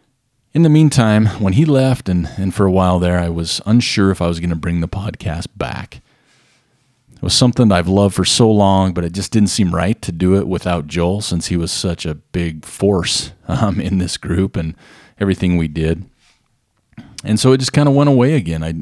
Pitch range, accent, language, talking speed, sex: 85-110 Hz, American, English, 215 wpm, male